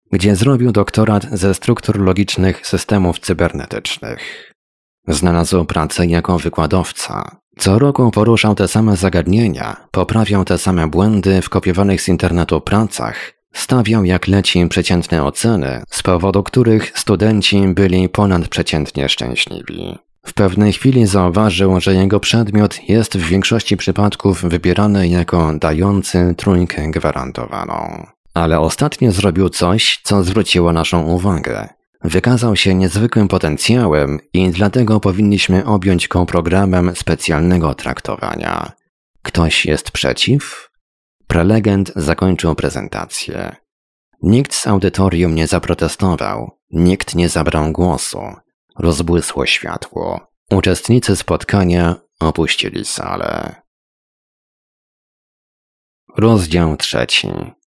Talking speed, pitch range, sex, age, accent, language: 100 wpm, 85-105 Hz, male, 30-49, native, Polish